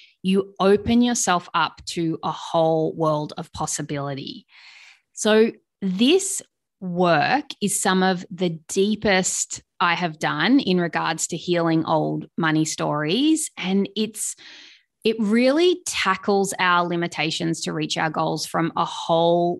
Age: 20-39